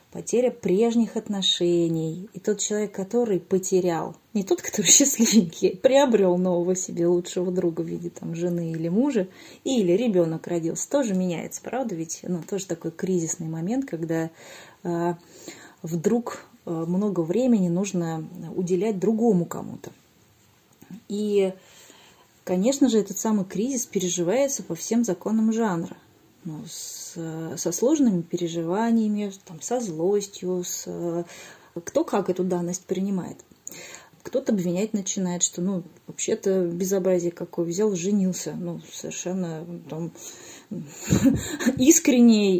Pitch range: 175-215 Hz